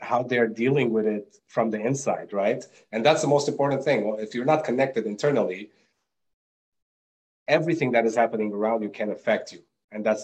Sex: male